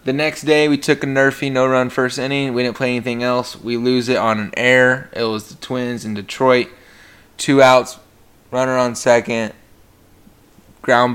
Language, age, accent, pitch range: English, 20-39, American, 110-130 Hz